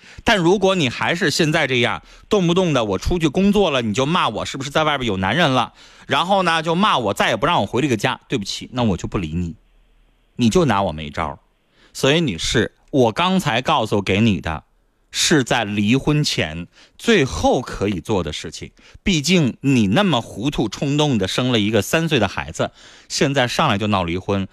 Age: 30-49